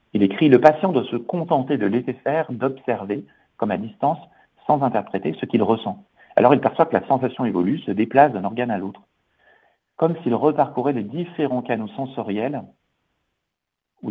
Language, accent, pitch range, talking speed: French, French, 100-135 Hz, 170 wpm